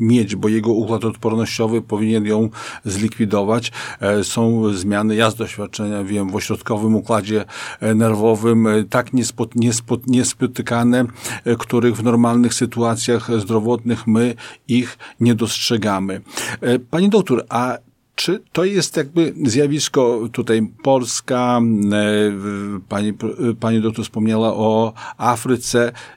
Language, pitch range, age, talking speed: Polish, 110-125 Hz, 50-69, 105 wpm